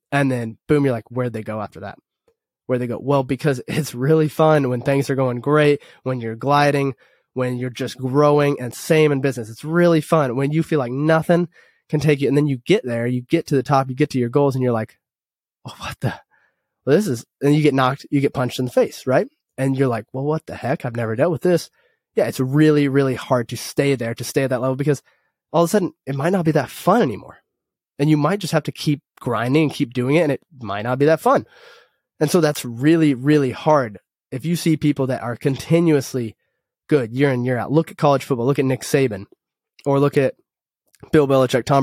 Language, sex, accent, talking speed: English, male, American, 240 wpm